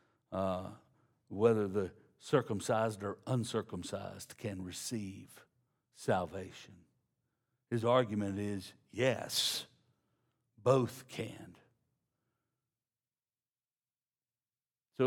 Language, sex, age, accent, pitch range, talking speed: English, male, 60-79, American, 110-135 Hz, 65 wpm